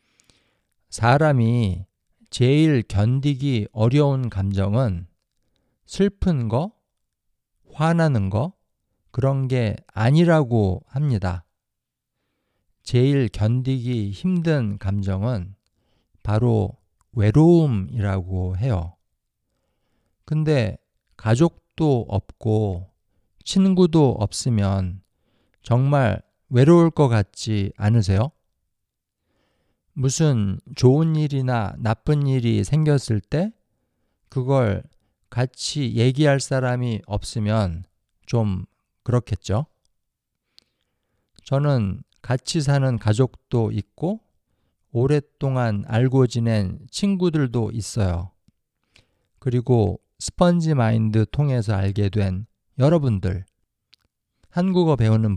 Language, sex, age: Korean, male, 50-69